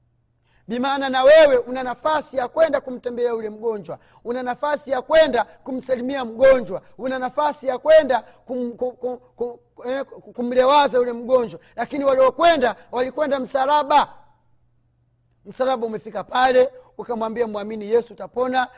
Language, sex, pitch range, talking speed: Swahili, male, 215-275 Hz, 120 wpm